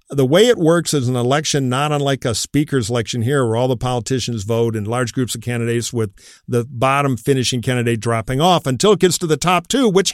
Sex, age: male, 50-69